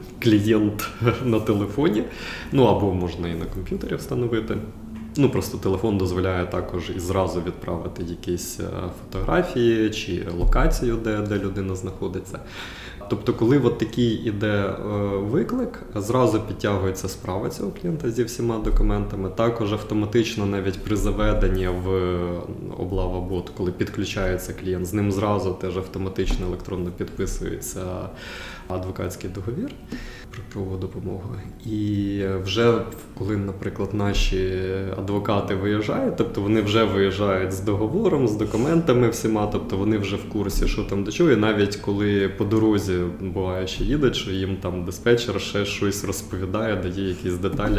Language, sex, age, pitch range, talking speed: Ukrainian, male, 20-39, 95-110 Hz, 135 wpm